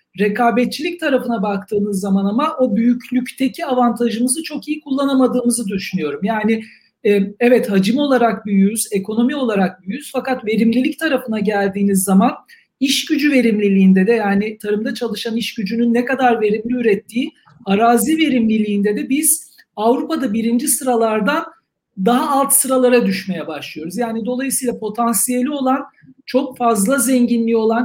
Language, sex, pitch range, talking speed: Turkish, male, 220-270 Hz, 125 wpm